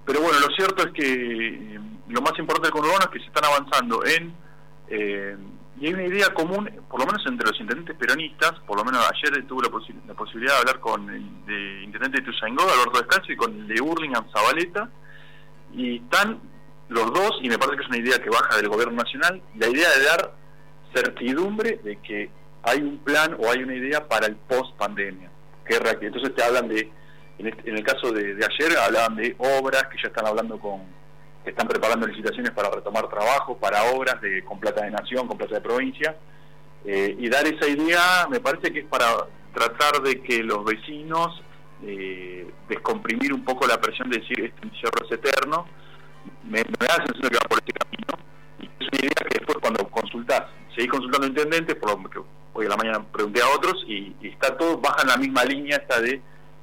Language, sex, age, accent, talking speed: Spanish, male, 40-59, Argentinian, 205 wpm